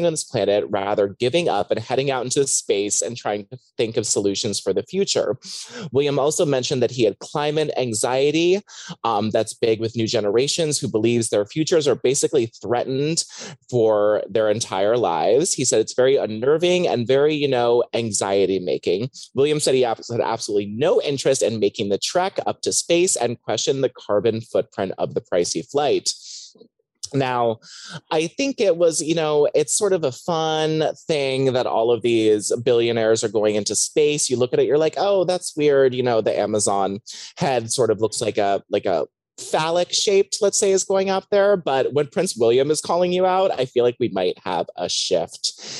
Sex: male